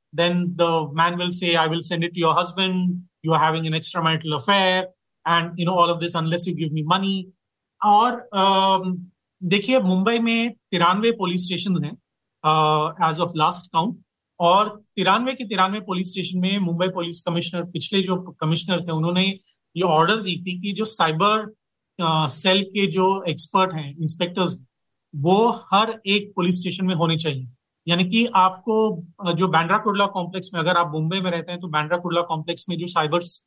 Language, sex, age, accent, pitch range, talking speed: Hindi, male, 40-59, native, 170-195 Hz, 175 wpm